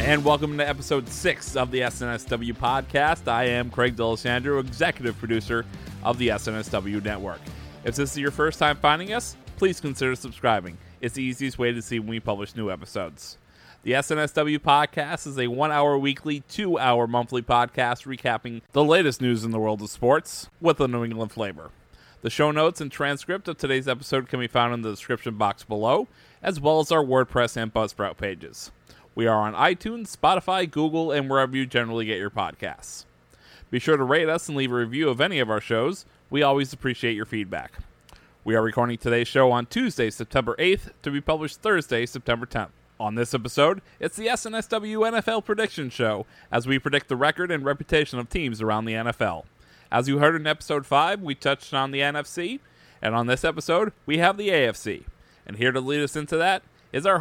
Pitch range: 120-150 Hz